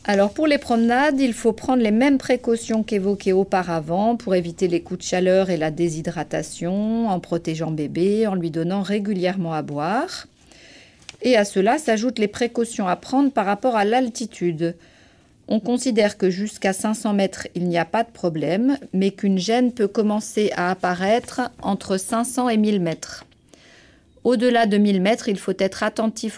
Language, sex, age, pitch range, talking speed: French, female, 40-59, 180-225 Hz, 170 wpm